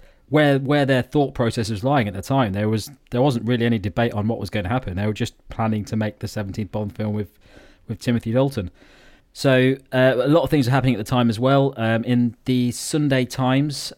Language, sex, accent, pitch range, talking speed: English, male, British, 105-125 Hz, 245 wpm